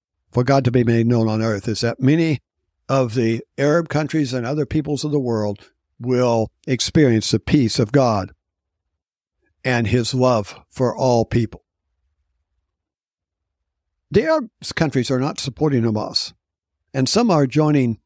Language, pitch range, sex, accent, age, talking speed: English, 105-140 Hz, male, American, 60-79, 145 wpm